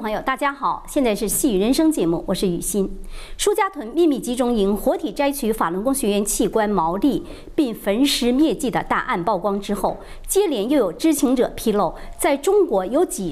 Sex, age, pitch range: male, 50-69, 195-290 Hz